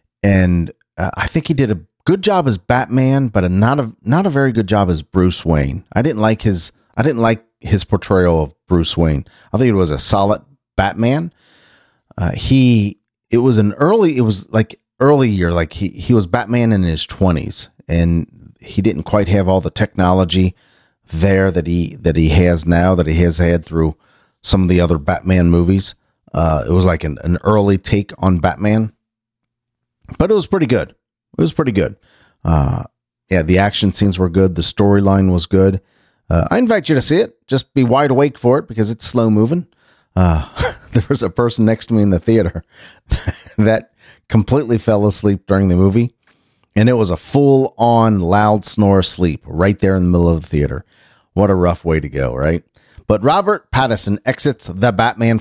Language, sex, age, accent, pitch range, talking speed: English, male, 40-59, American, 90-115 Hz, 195 wpm